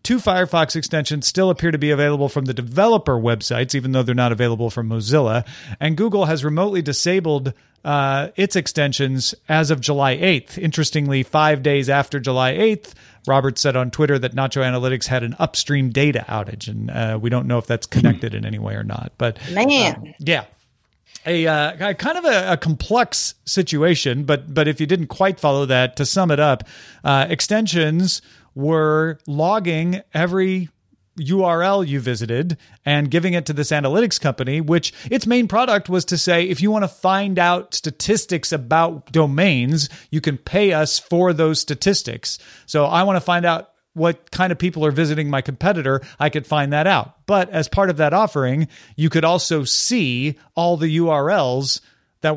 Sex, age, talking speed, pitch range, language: male, 40-59, 180 wpm, 135-175 Hz, English